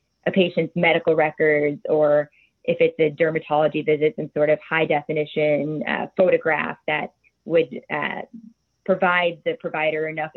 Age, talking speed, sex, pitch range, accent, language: 20-39, 135 wpm, female, 155-185 Hz, American, English